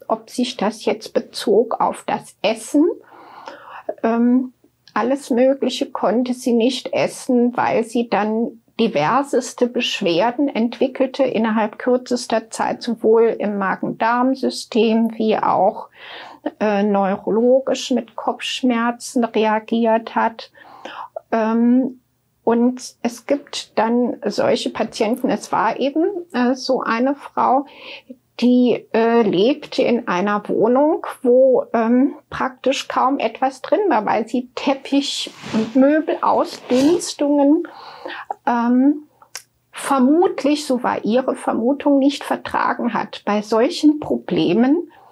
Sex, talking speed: female, 110 wpm